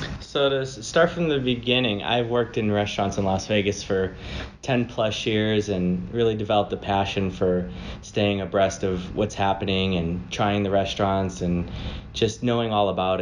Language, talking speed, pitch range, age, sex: English, 170 wpm, 100-120 Hz, 20-39, male